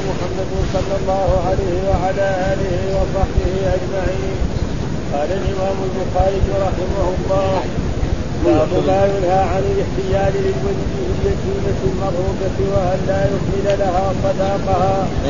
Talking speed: 95 wpm